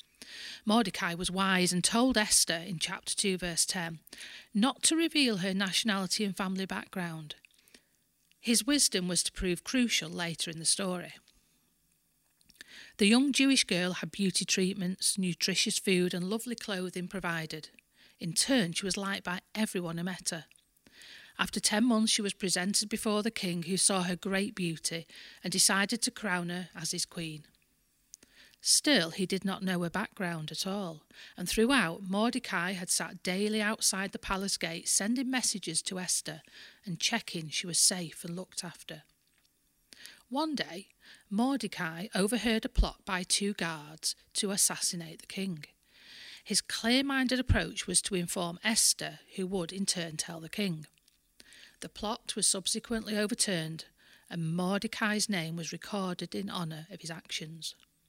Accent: British